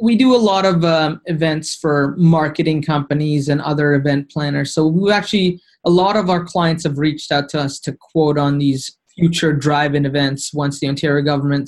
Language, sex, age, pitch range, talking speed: English, male, 20-39, 145-175 Hz, 195 wpm